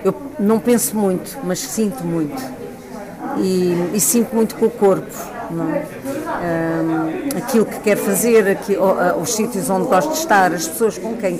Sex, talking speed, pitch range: female, 145 wpm, 180-220 Hz